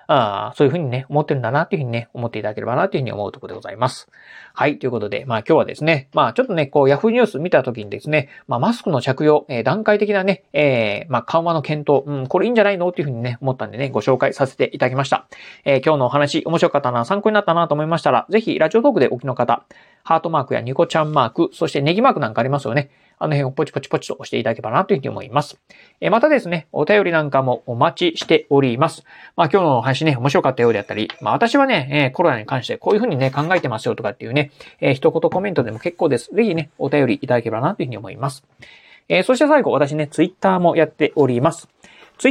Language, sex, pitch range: Japanese, male, 135-175 Hz